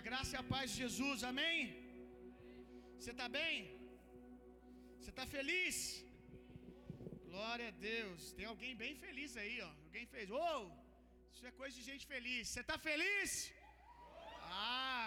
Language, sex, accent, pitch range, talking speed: Gujarati, male, Brazilian, 205-255 Hz, 145 wpm